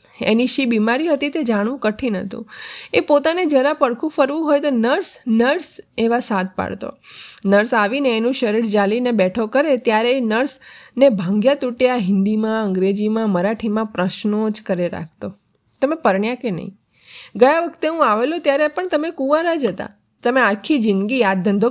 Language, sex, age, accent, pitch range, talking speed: Gujarati, female, 20-39, native, 210-280 Hz, 140 wpm